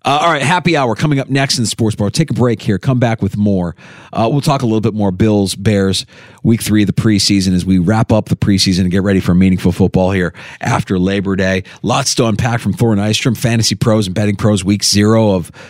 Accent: American